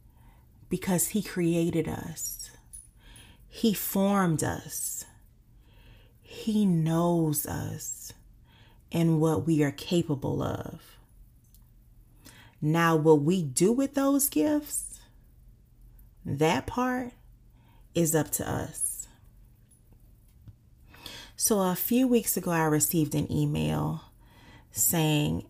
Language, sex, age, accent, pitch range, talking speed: English, female, 30-49, American, 120-175 Hz, 90 wpm